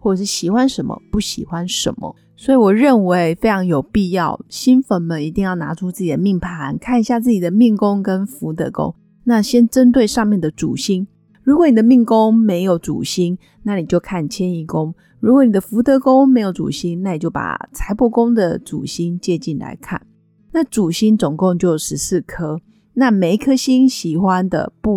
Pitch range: 175-230 Hz